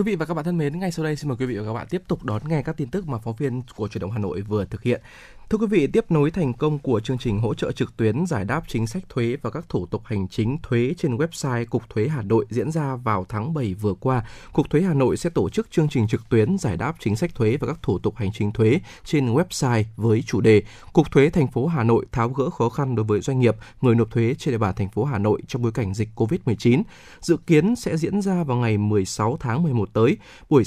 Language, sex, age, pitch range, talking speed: Vietnamese, male, 20-39, 110-150 Hz, 280 wpm